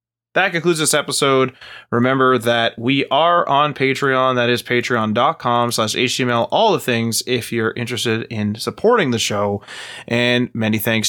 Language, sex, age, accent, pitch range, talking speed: English, male, 20-39, American, 115-140 Hz, 145 wpm